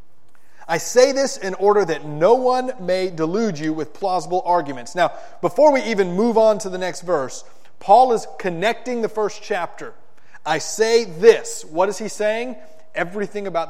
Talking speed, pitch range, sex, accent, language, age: 170 wpm, 160-225 Hz, male, American, English, 30-49